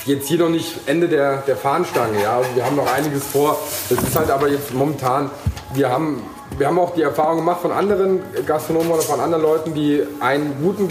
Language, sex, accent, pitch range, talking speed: German, male, German, 125-155 Hz, 215 wpm